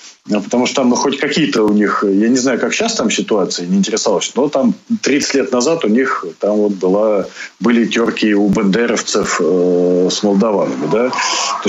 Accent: native